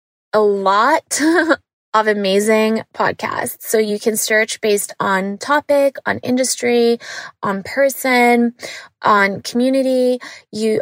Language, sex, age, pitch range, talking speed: English, female, 20-39, 210-235 Hz, 105 wpm